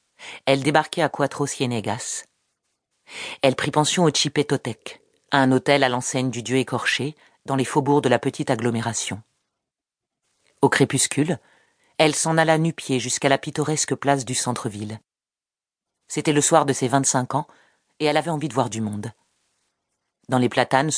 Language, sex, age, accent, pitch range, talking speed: French, female, 40-59, French, 120-145 Hz, 150 wpm